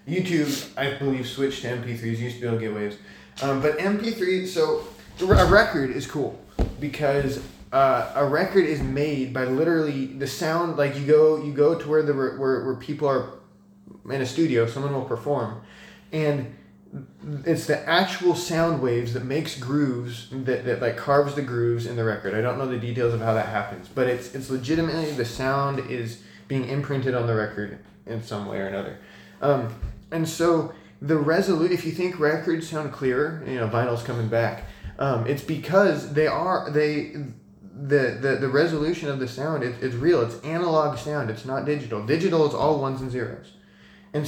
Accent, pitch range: American, 125-165 Hz